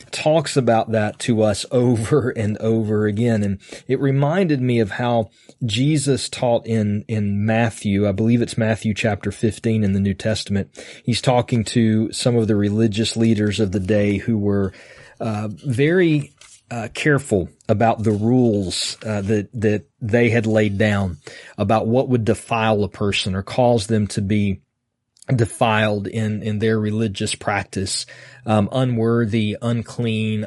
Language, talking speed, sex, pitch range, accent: English, 150 wpm, male, 105-125 Hz, American